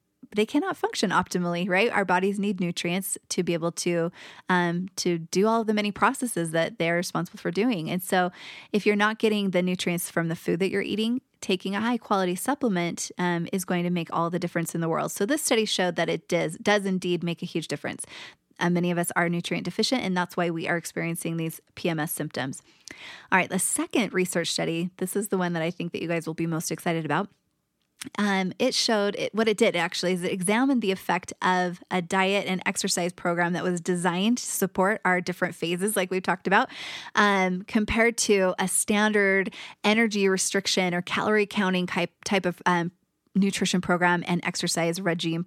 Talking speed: 205 wpm